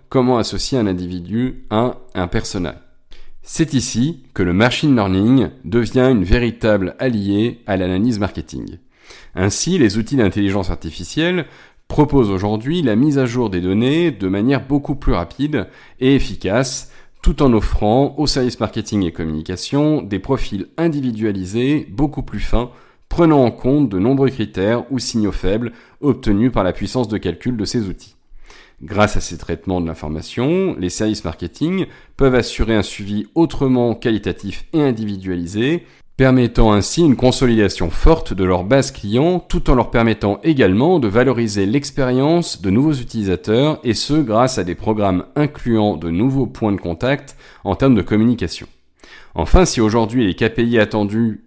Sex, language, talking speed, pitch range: male, French, 155 wpm, 100-130 Hz